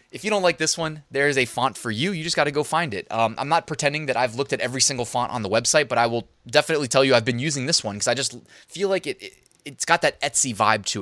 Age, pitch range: 20-39, 110-150 Hz